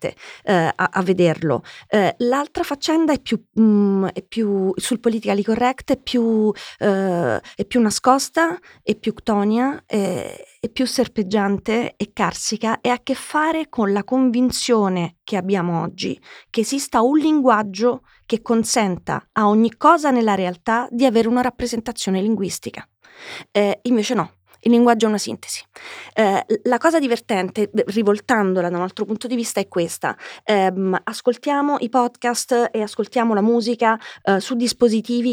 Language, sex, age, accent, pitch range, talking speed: Italian, female, 30-49, native, 205-250 Hz, 150 wpm